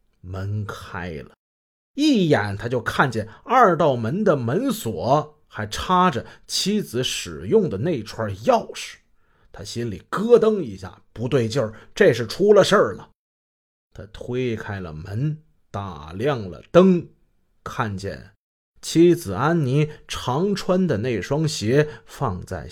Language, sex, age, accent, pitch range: Chinese, male, 30-49, native, 100-150 Hz